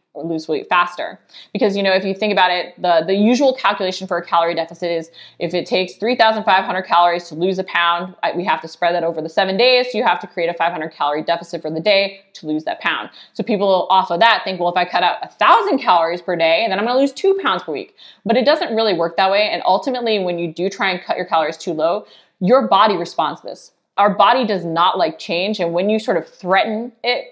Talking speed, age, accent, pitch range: 250 wpm, 20-39, American, 170-215 Hz